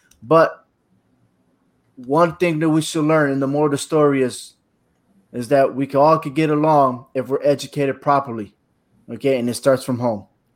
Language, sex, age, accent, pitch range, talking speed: English, male, 20-39, American, 140-165 Hz, 170 wpm